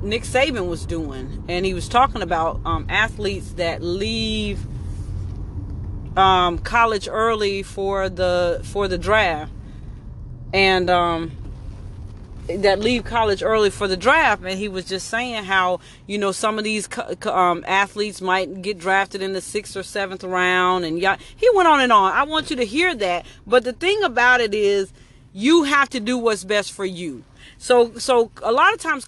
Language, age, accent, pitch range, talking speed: English, 30-49, American, 185-250 Hz, 175 wpm